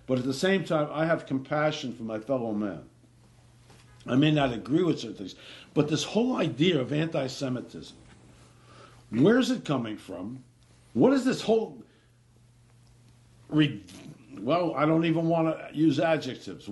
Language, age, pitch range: English, 60-79, 120-160 Hz